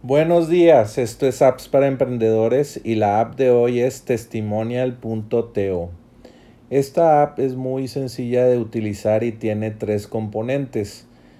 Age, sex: 40-59, male